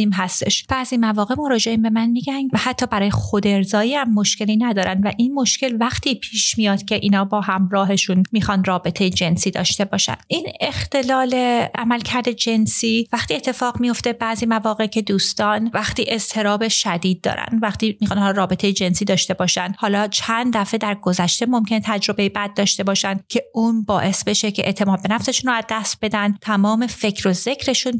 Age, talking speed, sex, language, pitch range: 30-49, 165 wpm, female, Persian, 195-235 Hz